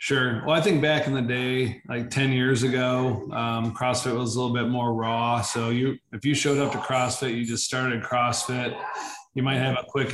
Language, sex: English, male